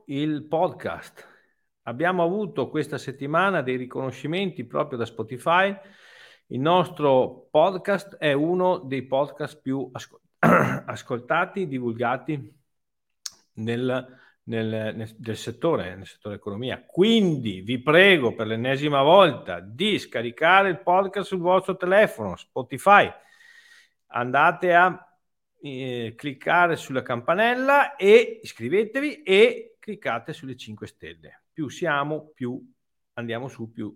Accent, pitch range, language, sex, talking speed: native, 125-190 Hz, Italian, male, 110 wpm